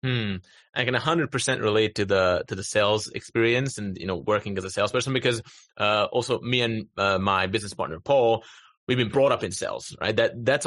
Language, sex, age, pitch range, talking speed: English, male, 30-49, 110-140 Hz, 210 wpm